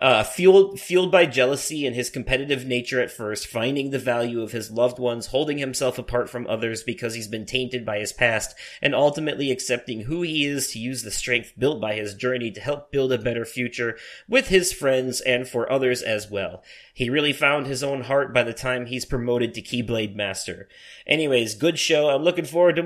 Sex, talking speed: male, 205 wpm